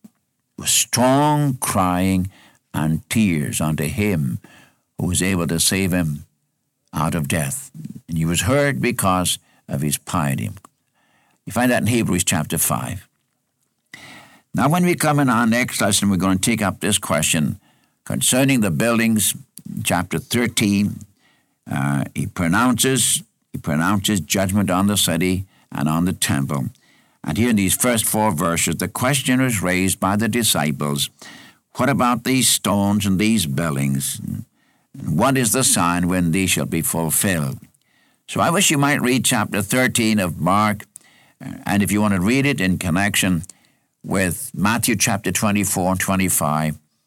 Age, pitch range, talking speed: 60-79, 85-120 Hz, 150 wpm